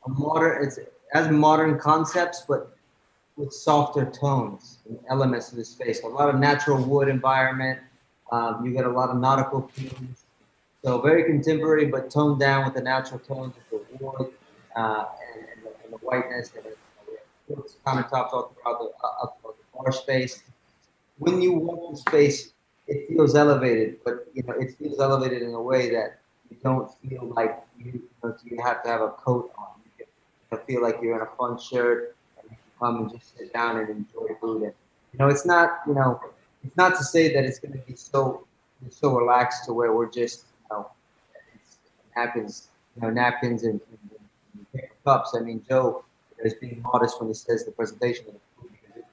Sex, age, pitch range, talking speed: male, 30-49, 120-140 Hz, 195 wpm